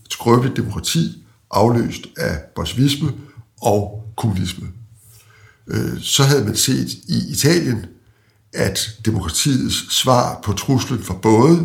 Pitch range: 105-125 Hz